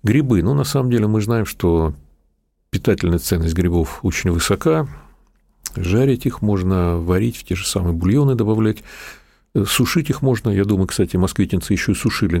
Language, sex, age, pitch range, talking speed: Russian, male, 50-69, 85-110 Hz, 160 wpm